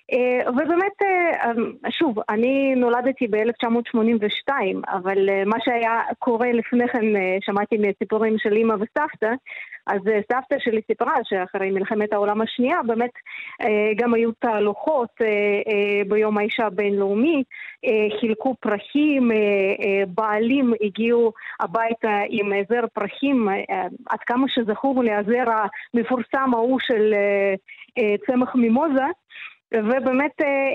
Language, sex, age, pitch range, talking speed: English, female, 30-49, 210-255 Hz, 95 wpm